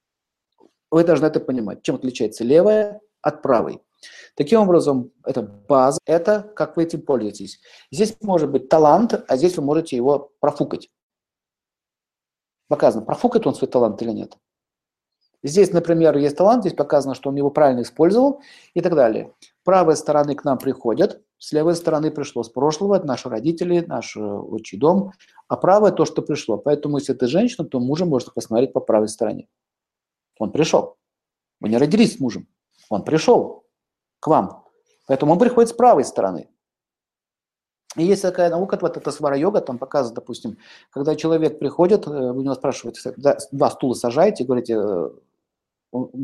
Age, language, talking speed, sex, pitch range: 50-69, Russian, 155 wpm, male, 135-175 Hz